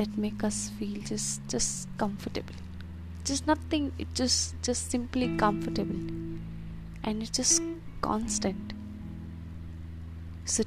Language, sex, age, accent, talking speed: English, female, 20-39, Indian, 105 wpm